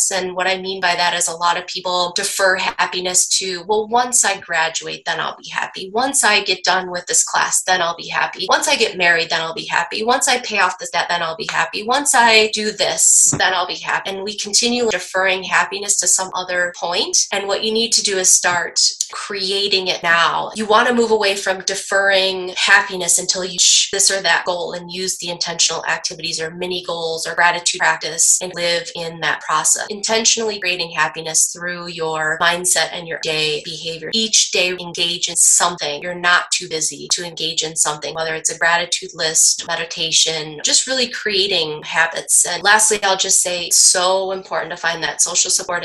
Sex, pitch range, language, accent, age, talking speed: female, 170-195 Hz, English, American, 20-39, 205 wpm